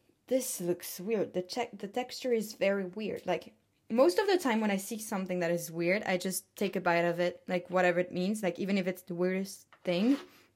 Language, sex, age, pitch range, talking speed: French, female, 20-39, 180-230 Hz, 225 wpm